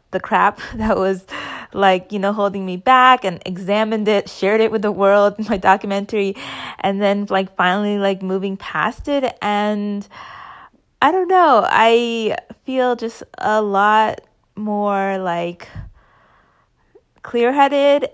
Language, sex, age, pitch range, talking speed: English, female, 20-39, 190-225 Hz, 135 wpm